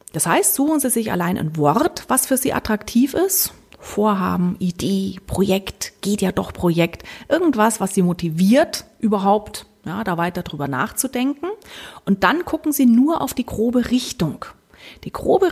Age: 30-49